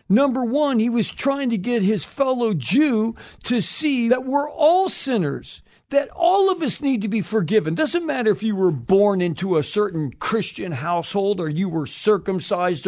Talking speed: 180 wpm